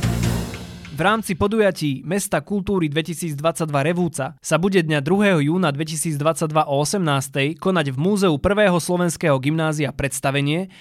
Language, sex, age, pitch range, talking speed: Slovak, male, 20-39, 145-185 Hz, 120 wpm